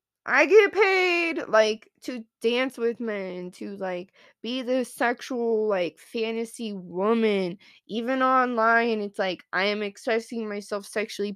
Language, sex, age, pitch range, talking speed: English, female, 20-39, 205-260 Hz, 130 wpm